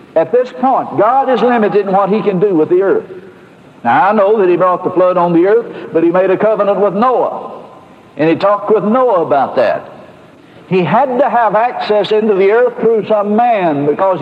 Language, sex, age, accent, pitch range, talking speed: English, male, 60-79, American, 160-245 Hz, 215 wpm